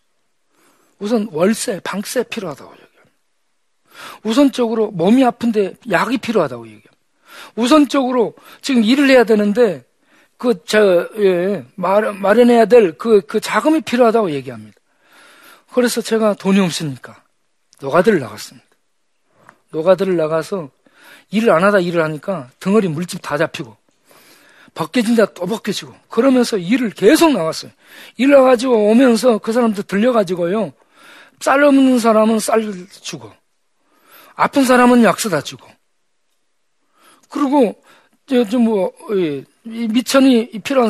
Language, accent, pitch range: Korean, native, 195-250 Hz